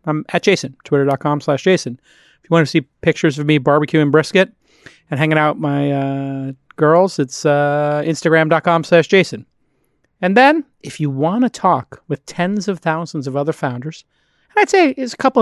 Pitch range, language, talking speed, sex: 145-185 Hz, English, 185 wpm, male